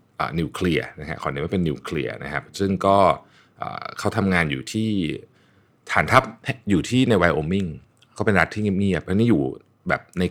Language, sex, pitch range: Thai, male, 85-115 Hz